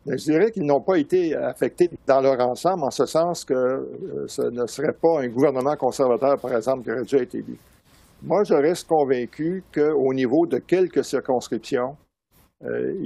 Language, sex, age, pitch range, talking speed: French, male, 60-79, 125-170 Hz, 175 wpm